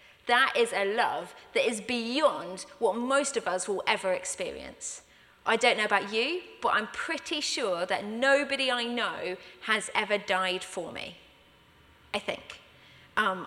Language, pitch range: English, 200-290 Hz